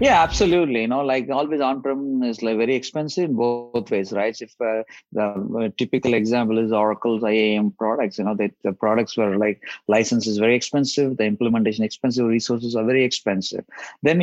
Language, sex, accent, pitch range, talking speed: English, male, Indian, 110-130 Hz, 180 wpm